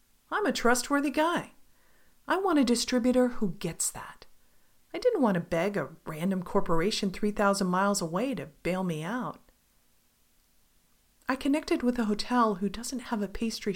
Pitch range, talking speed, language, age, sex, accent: 180-245 Hz, 155 wpm, English, 40-59, female, American